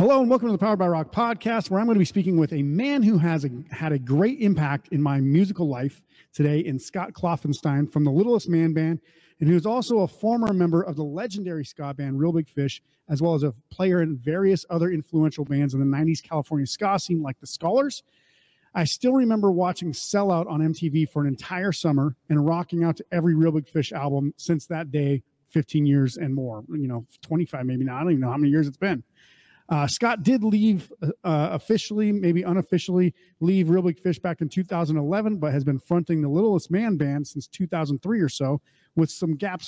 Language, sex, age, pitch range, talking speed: English, male, 30-49, 150-185 Hz, 215 wpm